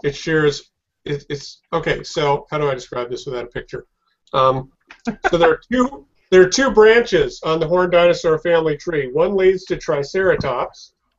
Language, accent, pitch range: English, American, 140-180 Hz